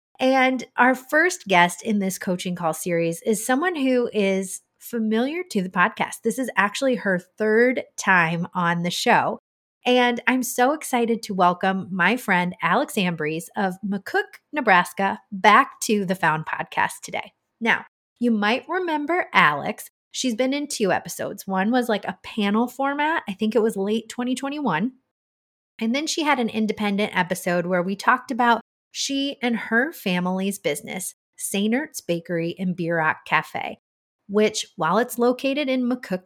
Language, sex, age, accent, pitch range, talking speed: English, female, 30-49, American, 180-250 Hz, 155 wpm